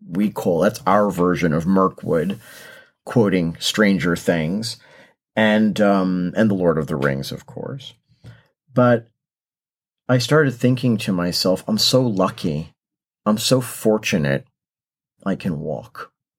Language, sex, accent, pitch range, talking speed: English, male, American, 95-130 Hz, 130 wpm